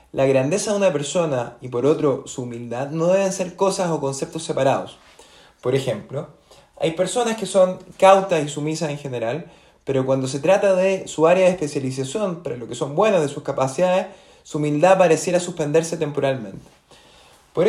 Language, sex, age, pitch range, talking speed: Spanish, male, 20-39, 140-190 Hz, 175 wpm